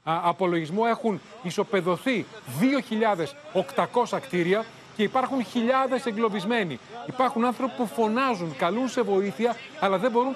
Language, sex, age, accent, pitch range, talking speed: Greek, male, 30-49, native, 180-235 Hz, 115 wpm